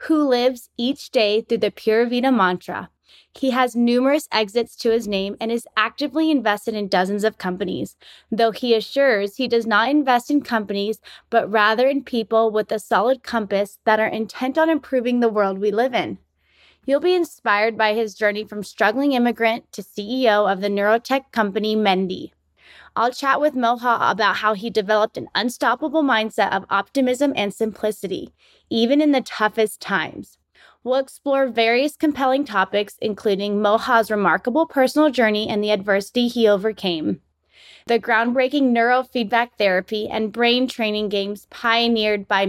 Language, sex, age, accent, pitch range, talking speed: English, female, 20-39, American, 210-255 Hz, 160 wpm